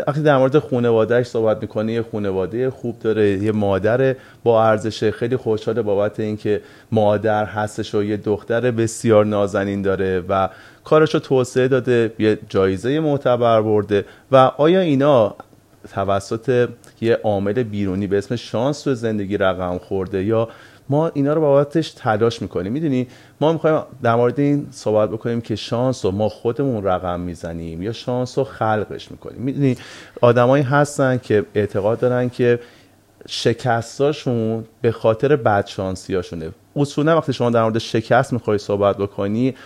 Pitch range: 105-135 Hz